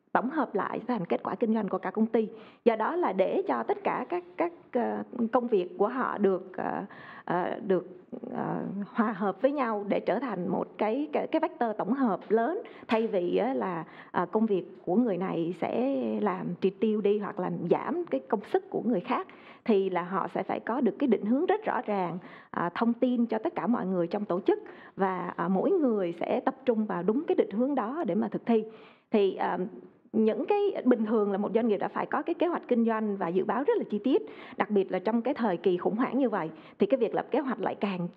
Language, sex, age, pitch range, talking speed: Vietnamese, female, 20-39, 200-270 Hz, 230 wpm